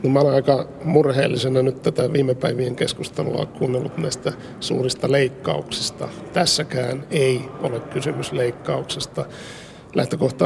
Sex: male